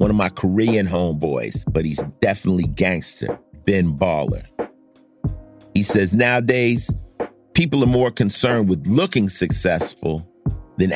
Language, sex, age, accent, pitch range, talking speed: English, male, 50-69, American, 85-110 Hz, 120 wpm